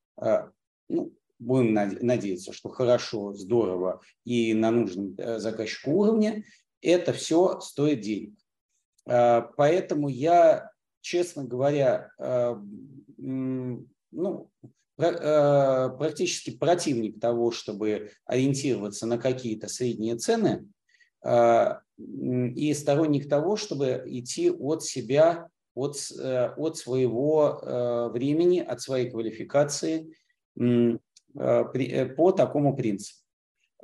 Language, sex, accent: Russian, male, native